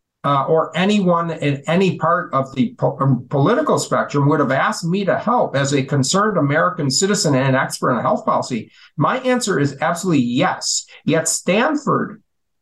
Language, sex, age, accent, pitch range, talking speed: English, male, 50-69, American, 140-180 Hz, 155 wpm